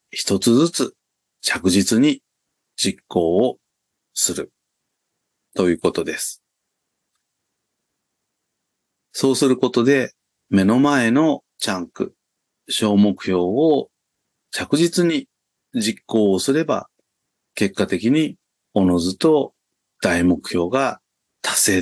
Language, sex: Japanese, male